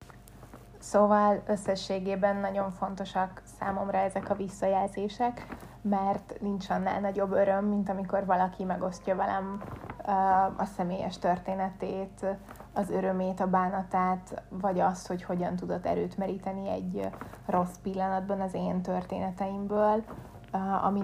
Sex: female